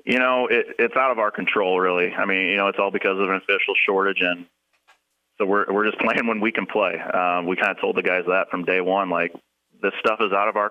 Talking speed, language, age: 270 wpm, English, 30-49